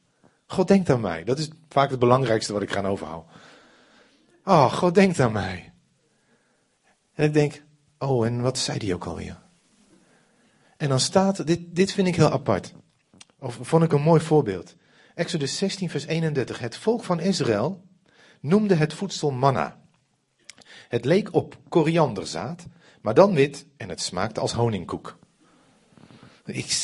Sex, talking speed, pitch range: male, 150 wpm, 120-170 Hz